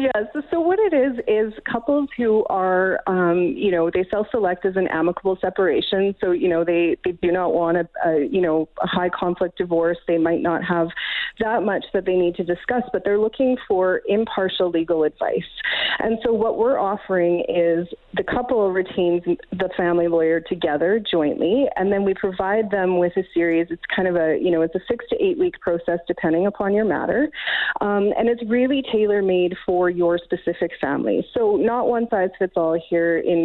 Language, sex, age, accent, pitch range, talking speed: English, female, 30-49, American, 175-220 Hz, 195 wpm